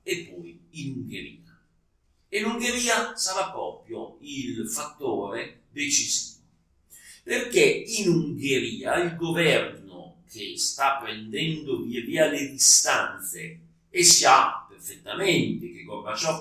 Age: 50-69